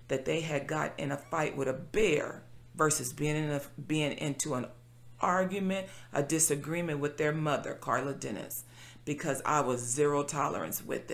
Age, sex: 40-59, female